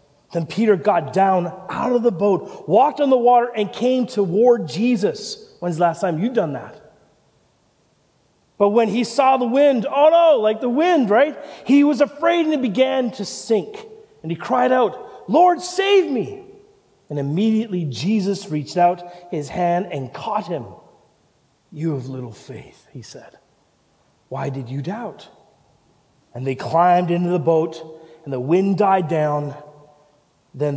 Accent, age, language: American, 30-49, English